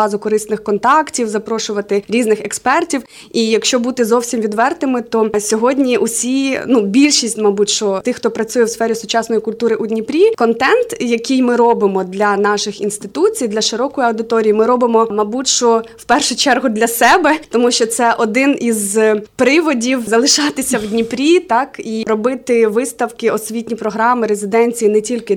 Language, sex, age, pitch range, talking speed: Ukrainian, female, 20-39, 215-245 Hz, 150 wpm